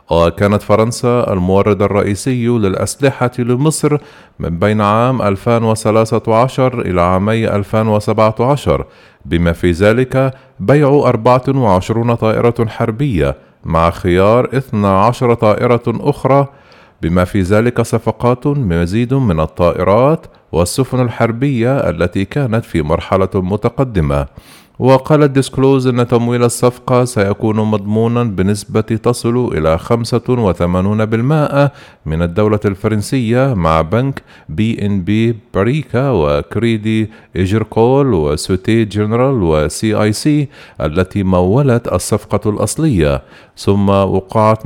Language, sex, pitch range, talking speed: Arabic, male, 95-125 Hz, 95 wpm